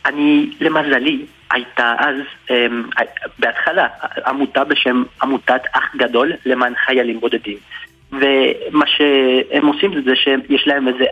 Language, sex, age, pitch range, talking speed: Hebrew, male, 30-49, 125-145 Hz, 120 wpm